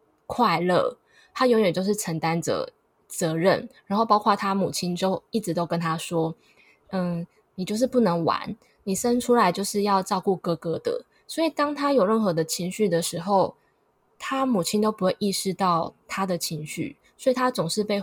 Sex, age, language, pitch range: female, 20-39, Chinese, 175-220 Hz